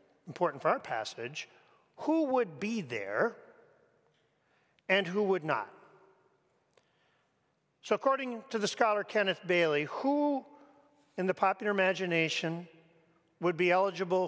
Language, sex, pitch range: English, male, 160-210 Hz